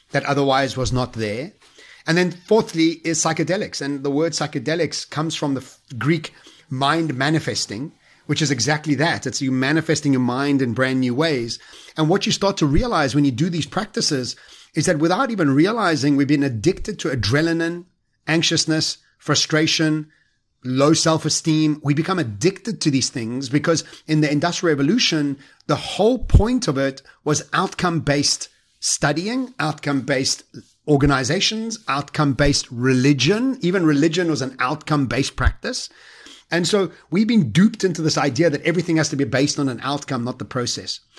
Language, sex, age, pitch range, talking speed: English, male, 30-49, 135-165 Hz, 155 wpm